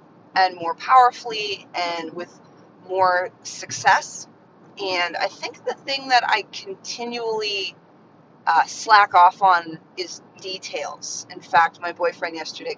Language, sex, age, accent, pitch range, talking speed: English, female, 30-49, American, 180-240 Hz, 120 wpm